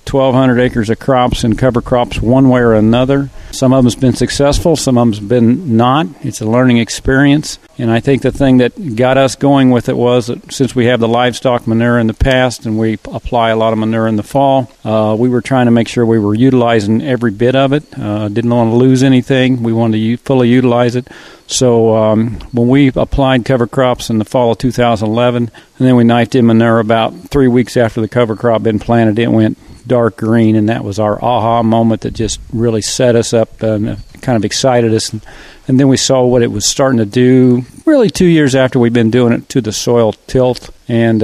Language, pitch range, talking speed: English, 115-130 Hz, 230 wpm